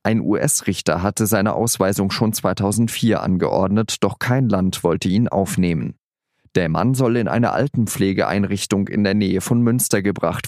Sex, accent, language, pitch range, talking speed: male, German, German, 100-120 Hz, 150 wpm